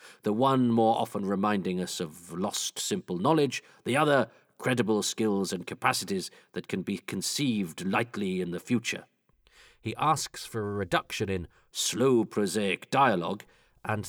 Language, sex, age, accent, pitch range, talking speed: English, male, 40-59, British, 95-120 Hz, 145 wpm